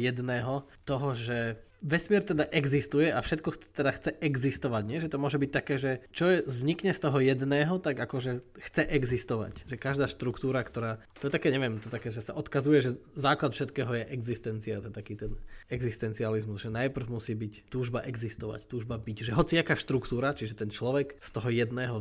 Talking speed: 190 wpm